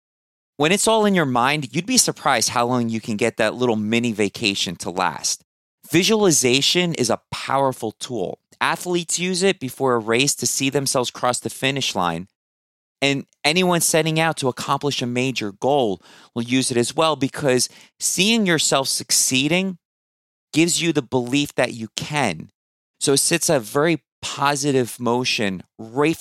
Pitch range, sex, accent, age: 115-155 Hz, male, American, 30-49